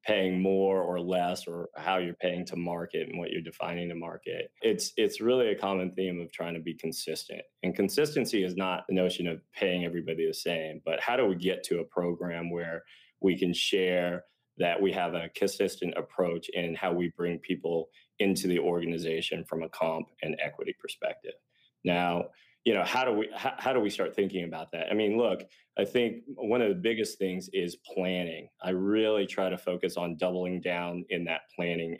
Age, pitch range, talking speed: 20-39, 85-95 Hz, 200 wpm